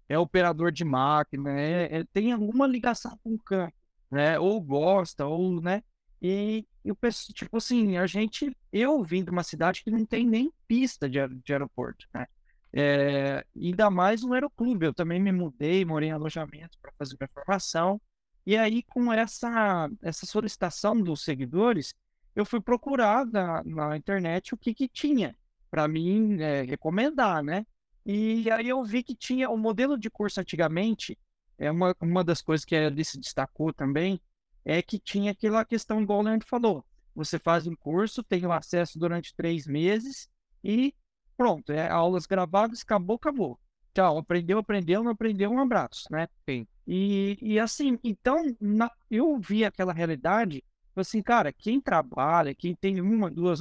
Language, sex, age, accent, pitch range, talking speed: Portuguese, male, 20-39, Brazilian, 165-225 Hz, 170 wpm